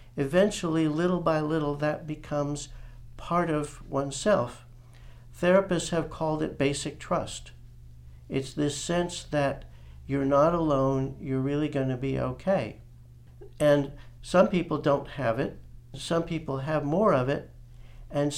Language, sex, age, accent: English, male, 60-79, American